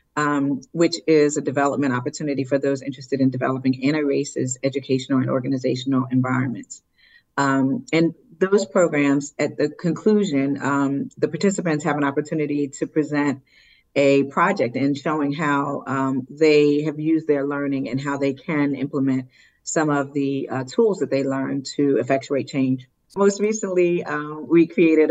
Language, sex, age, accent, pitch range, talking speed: English, female, 40-59, American, 135-155 Hz, 150 wpm